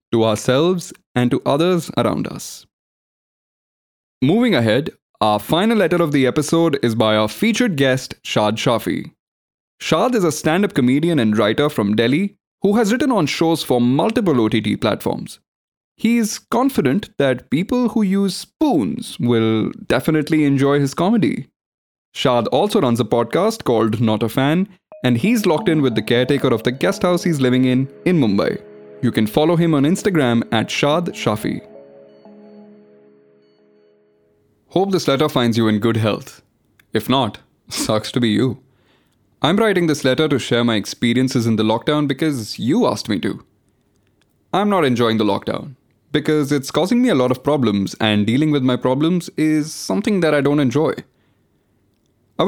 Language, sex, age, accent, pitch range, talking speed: English, male, 20-39, Indian, 110-165 Hz, 160 wpm